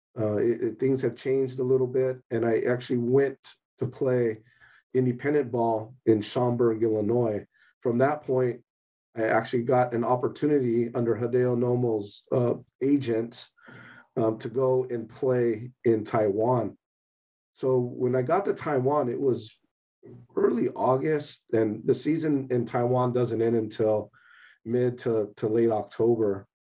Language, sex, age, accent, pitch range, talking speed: English, male, 40-59, American, 115-130 Hz, 140 wpm